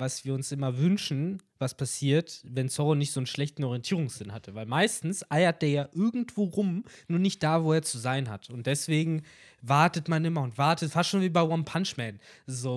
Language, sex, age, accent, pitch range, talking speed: German, male, 20-39, German, 130-160 Hz, 210 wpm